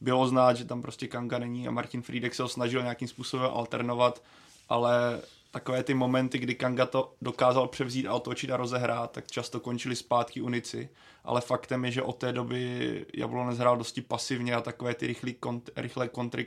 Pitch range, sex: 120-125 Hz, male